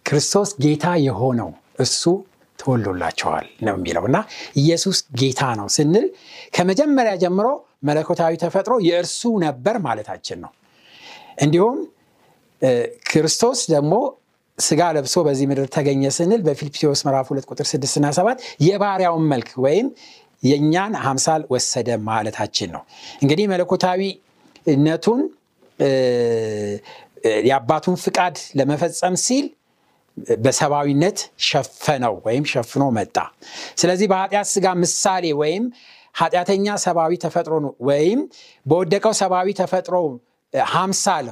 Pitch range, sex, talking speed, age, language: 140-210 Hz, male, 100 wpm, 60-79, Amharic